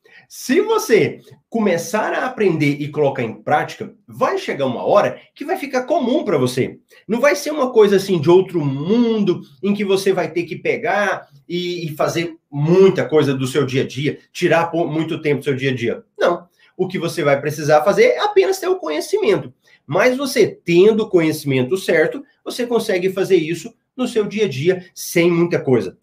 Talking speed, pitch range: 190 wpm, 150-230 Hz